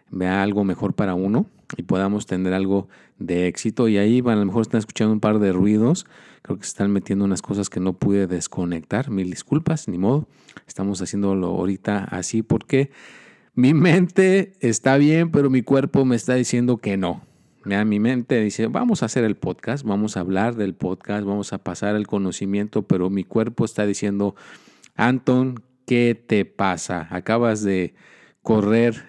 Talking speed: 175 wpm